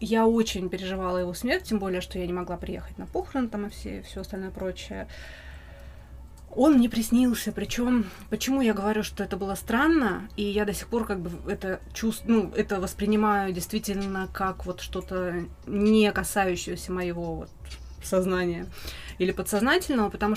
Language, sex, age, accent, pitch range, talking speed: Russian, female, 20-39, native, 185-230 Hz, 165 wpm